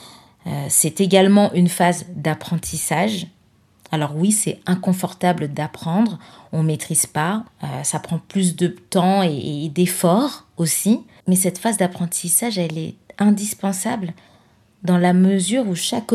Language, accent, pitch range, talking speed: French, French, 175-210 Hz, 125 wpm